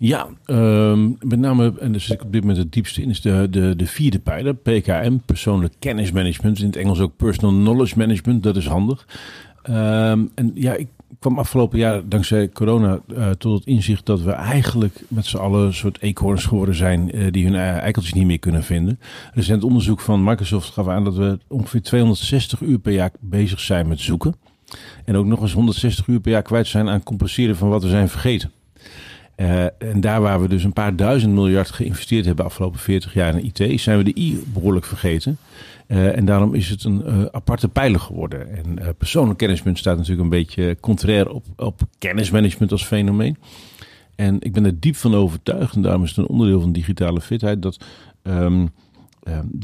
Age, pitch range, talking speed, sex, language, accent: 50-69, 95-115 Hz, 200 wpm, male, Dutch, Dutch